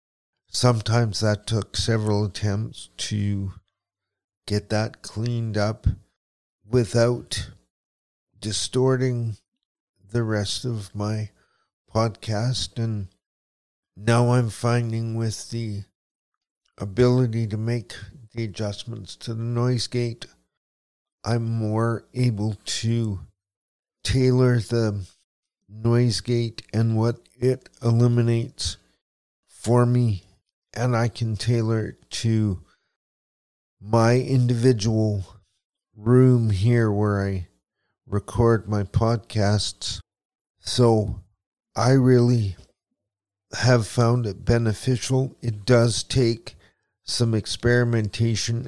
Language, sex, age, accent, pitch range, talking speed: English, male, 50-69, American, 100-120 Hz, 90 wpm